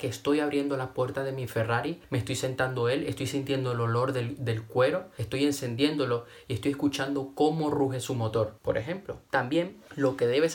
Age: 20-39